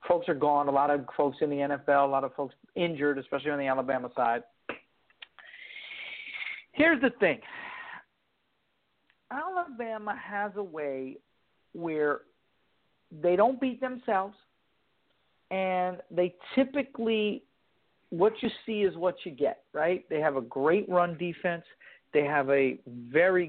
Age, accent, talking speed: 50-69, American, 135 wpm